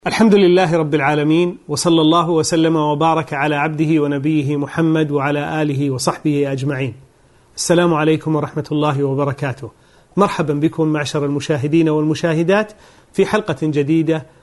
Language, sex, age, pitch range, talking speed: Arabic, male, 40-59, 145-175 Hz, 120 wpm